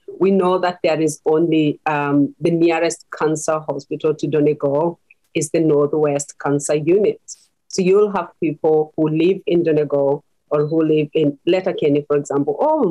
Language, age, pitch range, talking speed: English, 40-59, 150-185 Hz, 160 wpm